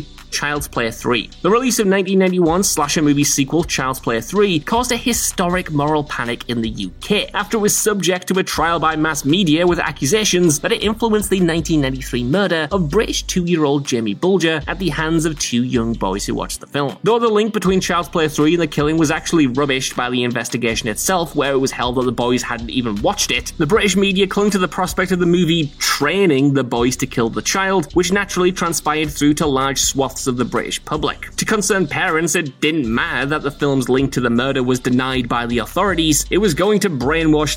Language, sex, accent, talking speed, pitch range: English, male, British, 215 wpm, 135-185 Hz